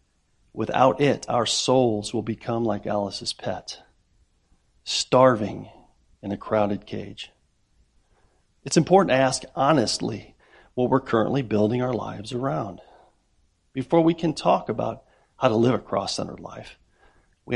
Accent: American